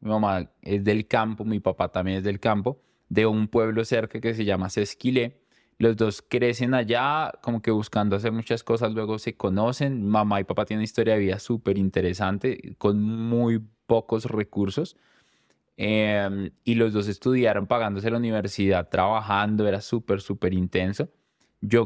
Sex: male